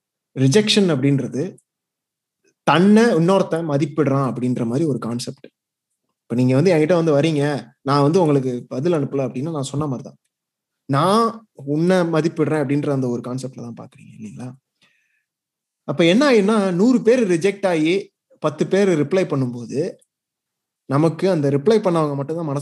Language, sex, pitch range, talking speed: Tamil, male, 135-190 Hz, 130 wpm